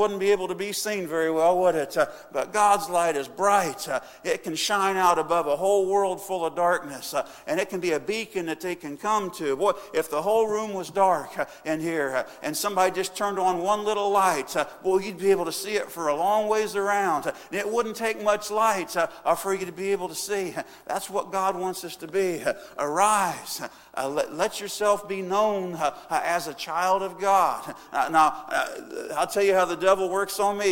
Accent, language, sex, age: American, English, male, 50-69